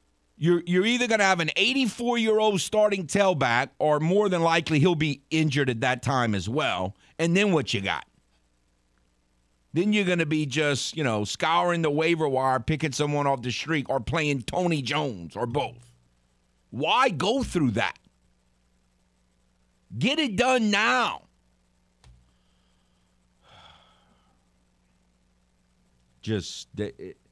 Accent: American